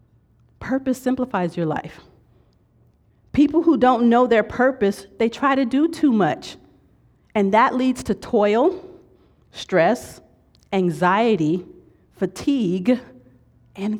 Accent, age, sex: American, 40-59, female